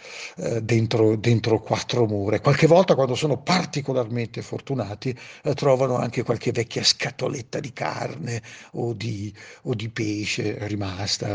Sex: male